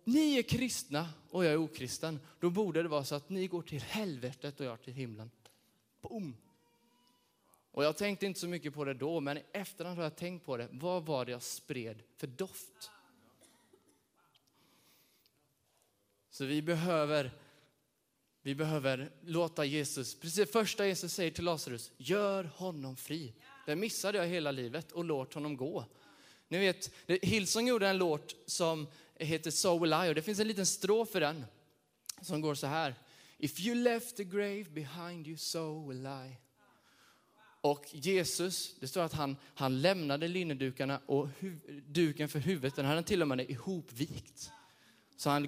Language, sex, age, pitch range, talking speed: Swedish, male, 20-39, 140-180 Hz, 165 wpm